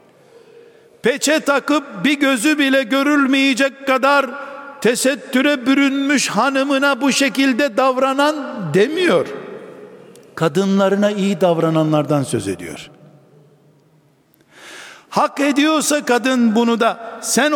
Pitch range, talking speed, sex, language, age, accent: 210-285 Hz, 85 wpm, male, Turkish, 60-79, native